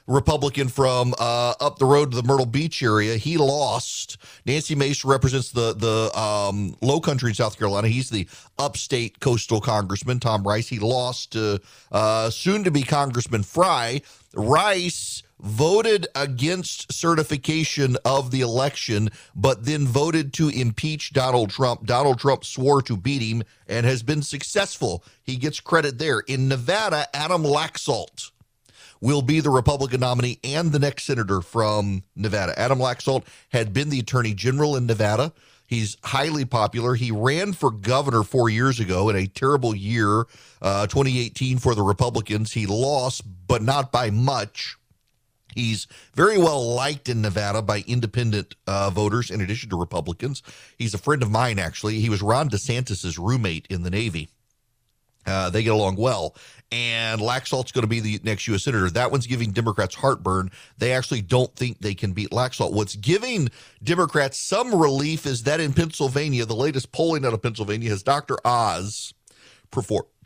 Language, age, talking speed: English, 40-59, 160 wpm